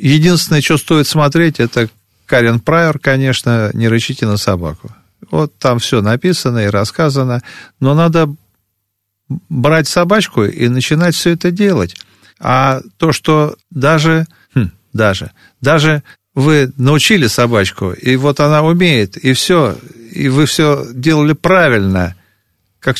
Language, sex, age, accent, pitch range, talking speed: Russian, male, 40-59, native, 105-160 Hz, 130 wpm